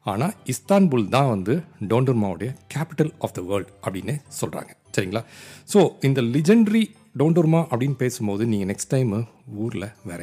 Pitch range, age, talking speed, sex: 100-130 Hz, 40-59, 135 wpm, male